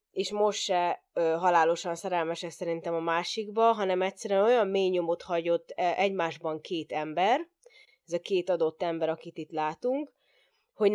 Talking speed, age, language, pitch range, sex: 155 wpm, 20-39, Hungarian, 170-215 Hz, female